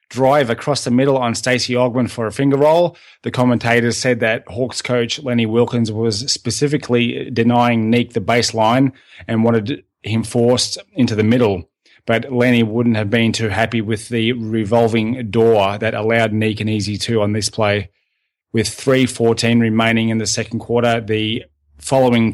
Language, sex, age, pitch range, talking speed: English, male, 20-39, 110-125 Hz, 165 wpm